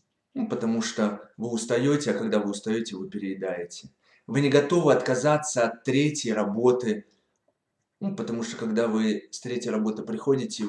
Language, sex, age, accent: Russian, male, 20-39, native